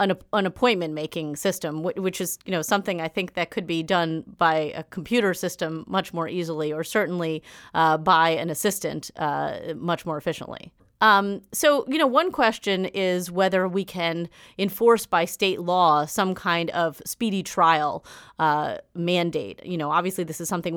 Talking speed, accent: 170 wpm, American